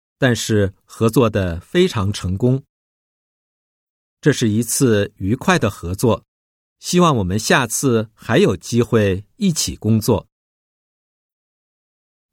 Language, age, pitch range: Japanese, 50-69, 95-155 Hz